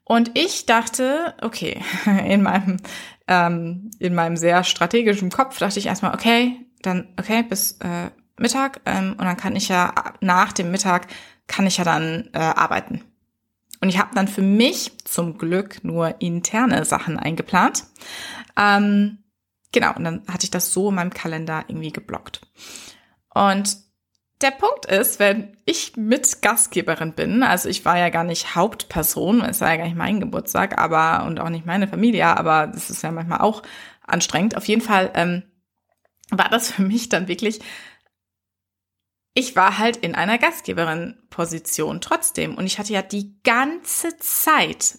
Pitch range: 175-235 Hz